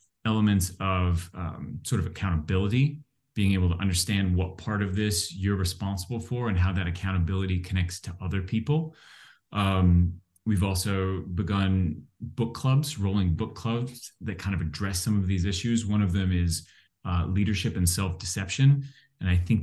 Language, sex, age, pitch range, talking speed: English, male, 30-49, 90-105 Hz, 160 wpm